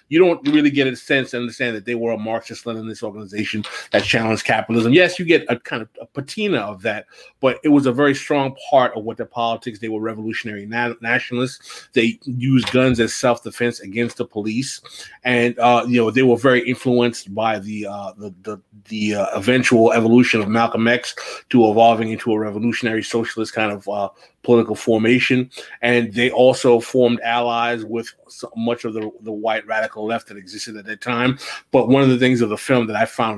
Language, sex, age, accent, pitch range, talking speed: English, male, 30-49, American, 110-125 Hz, 200 wpm